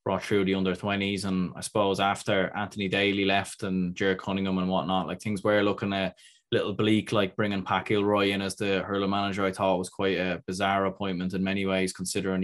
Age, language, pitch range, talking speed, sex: 20-39, English, 95-105 Hz, 210 wpm, male